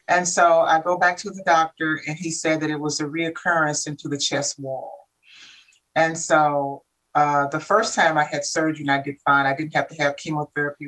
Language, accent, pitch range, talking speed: English, American, 140-160 Hz, 215 wpm